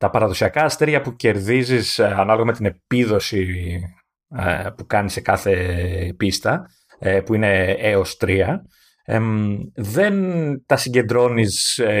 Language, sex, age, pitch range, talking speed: Greek, male, 30-49, 105-140 Hz, 125 wpm